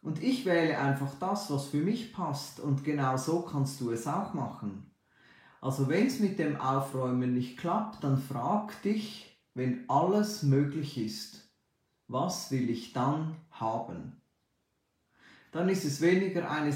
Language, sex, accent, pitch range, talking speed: German, male, Austrian, 135-185 Hz, 150 wpm